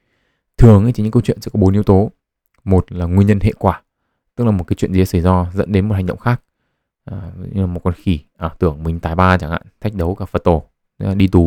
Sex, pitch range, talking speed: male, 90-105 Hz, 265 wpm